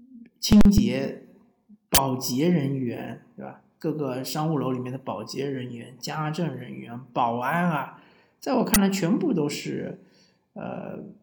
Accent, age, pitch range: native, 50-69, 145-210 Hz